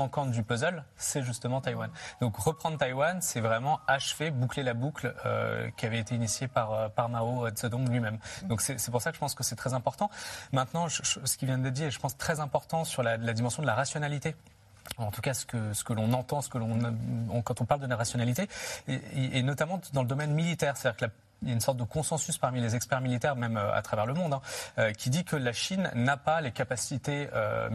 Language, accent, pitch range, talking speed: French, French, 115-145 Hz, 250 wpm